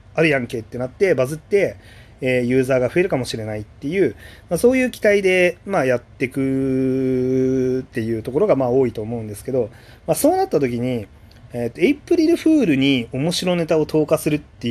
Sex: male